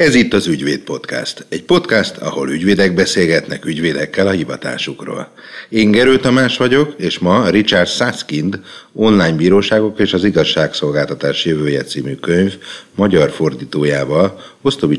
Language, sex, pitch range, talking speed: Hungarian, male, 75-105 Hz, 130 wpm